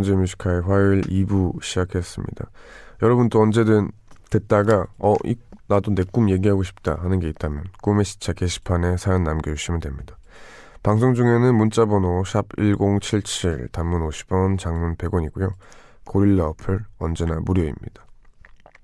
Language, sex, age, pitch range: Korean, male, 20-39, 85-105 Hz